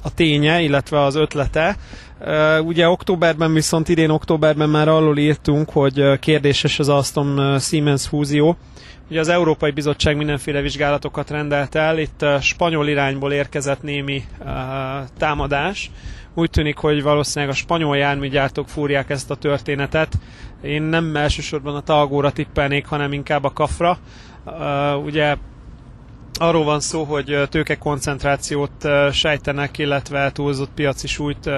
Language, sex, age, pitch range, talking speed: Hungarian, male, 30-49, 135-150 Hz, 135 wpm